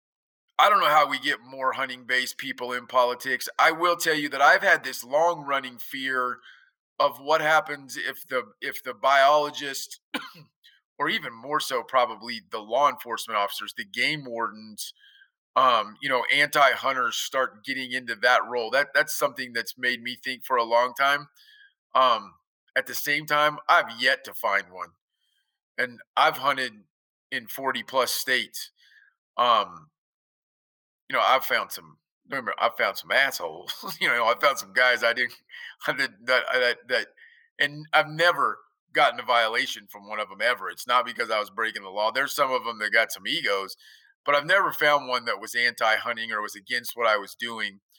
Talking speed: 185 wpm